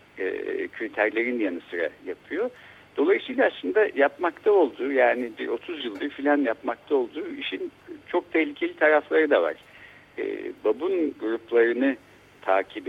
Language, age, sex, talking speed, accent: Turkish, 60-79, male, 115 wpm, native